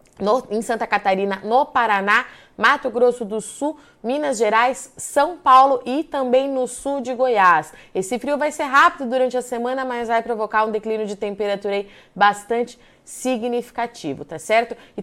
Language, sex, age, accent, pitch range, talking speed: Portuguese, female, 20-39, Brazilian, 220-255 Hz, 155 wpm